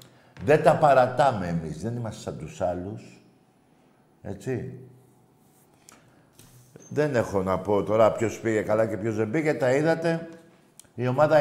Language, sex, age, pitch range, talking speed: Greek, male, 50-69, 115-150 Hz, 135 wpm